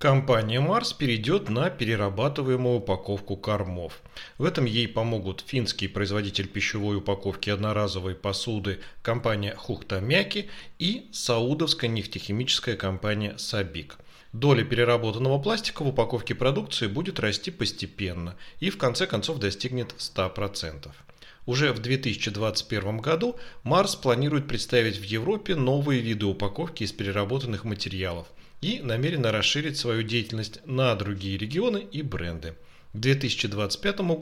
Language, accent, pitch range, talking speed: Russian, native, 100-135 Hz, 115 wpm